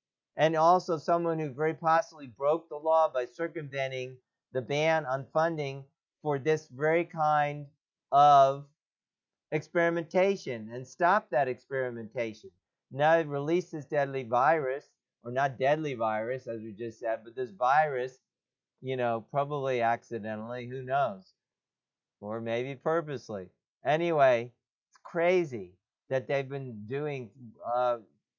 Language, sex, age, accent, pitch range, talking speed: English, male, 50-69, American, 125-160 Hz, 125 wpm